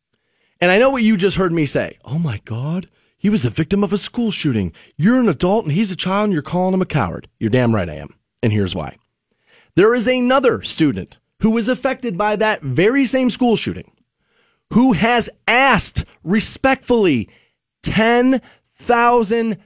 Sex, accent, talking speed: male, American, 180 wpm